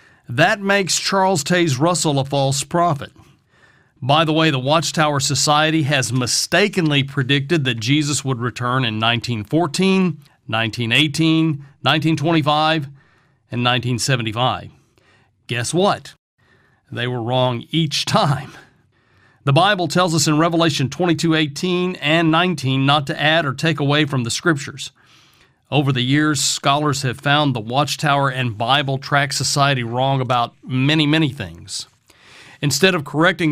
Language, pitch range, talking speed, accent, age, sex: English, 130-160 Hz, 130 wpm, American, 40-59, male